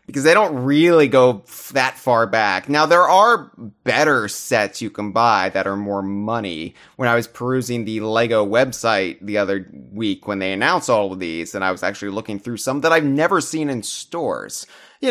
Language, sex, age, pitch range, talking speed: English, male, 30-49, 100-145 Hz, 200 wpm